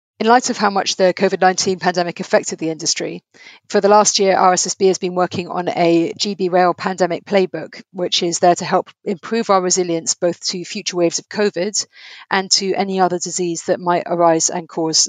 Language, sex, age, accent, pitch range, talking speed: English, female, 30-49, British, 170-195 Hz, 195 wpm